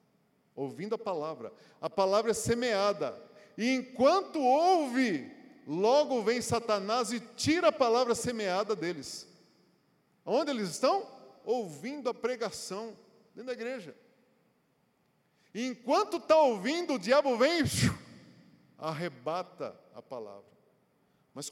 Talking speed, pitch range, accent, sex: 110 wpm, 155-225 Hz, Brazilian, male